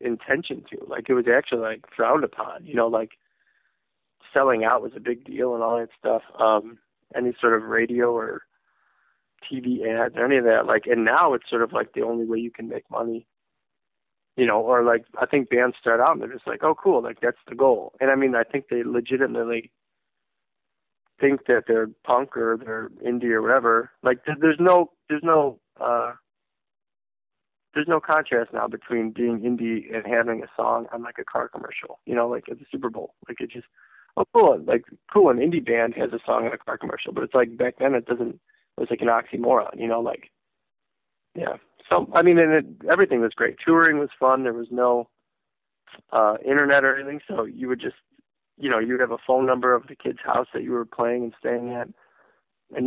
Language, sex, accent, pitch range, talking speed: English, male, American, 115-135 Hz, 210 wpm